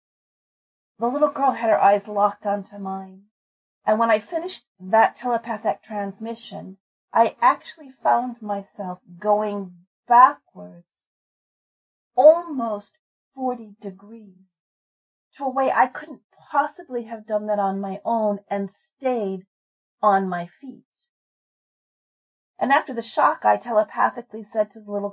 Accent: American